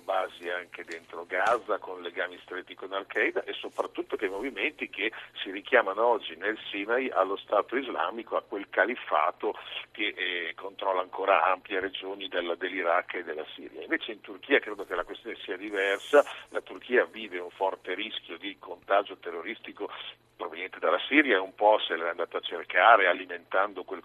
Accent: native